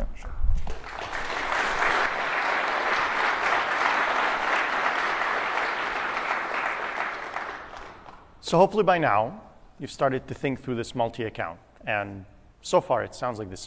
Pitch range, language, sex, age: 105-140 Hz, English, male, 40-59